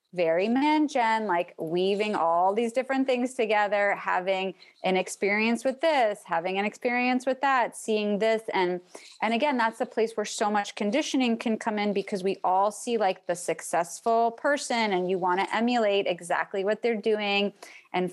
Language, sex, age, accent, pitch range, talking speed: English, female, 20-39, American, 190-230 Hz, 170 wpm